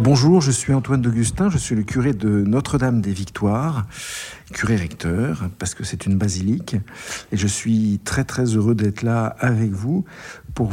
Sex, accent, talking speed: male, French, 155 wpm